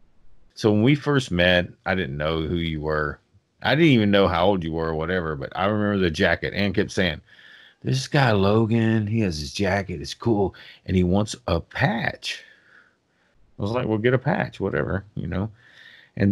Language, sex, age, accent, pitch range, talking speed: English, male, 40-59, American, 90-120 Hz, 200 wpm